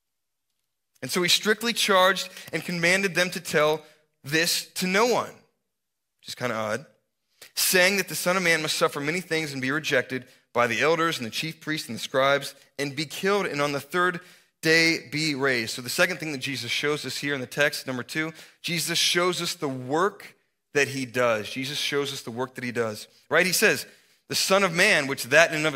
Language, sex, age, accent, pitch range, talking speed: English, male, 30-49, American, 135-175 Hz, 220 wpm